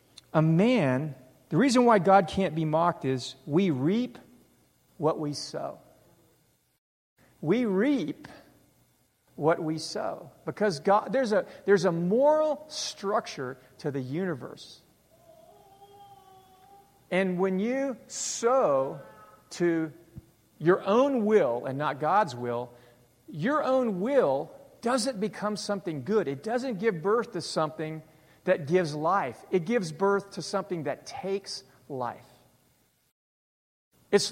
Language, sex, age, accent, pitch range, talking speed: English, male, 50-69, American, 150-205 Hz, 120 wpm